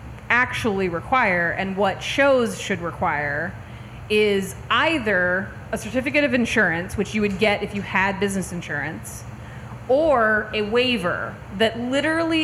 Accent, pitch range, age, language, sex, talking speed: American, 180-230 Hz, 30-49, English, female, 130 wpm